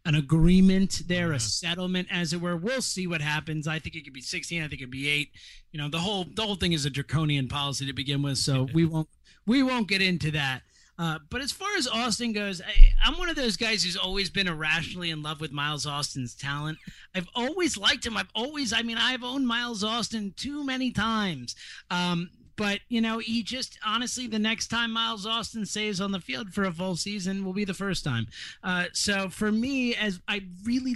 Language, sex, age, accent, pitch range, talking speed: English, male, 30-49, American, 175-225 Hz, 220 wpm